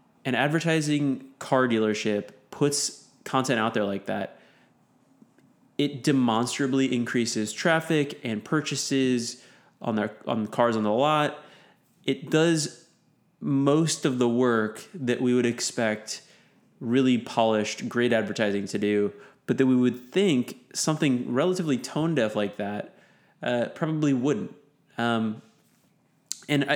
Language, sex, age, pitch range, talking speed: English, male, 20-39, 110-145 Hz, 125 wpm